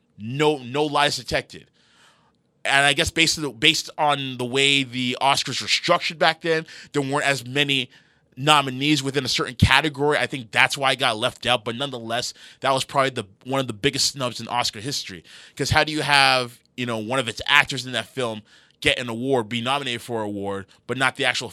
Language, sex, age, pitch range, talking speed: English, male, 20-39, 120-145 Hz, 215 wpm